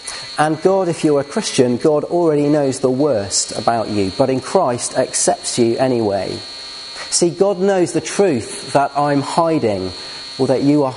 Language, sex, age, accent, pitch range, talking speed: English, male, 40-59, British, 125-155 Hz, 170 wpm